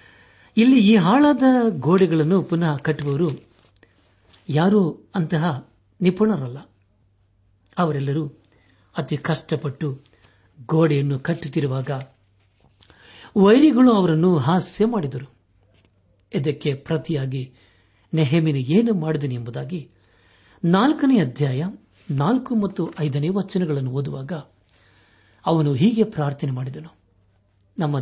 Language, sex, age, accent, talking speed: Kannada, male, 60-79, native, 75 wpm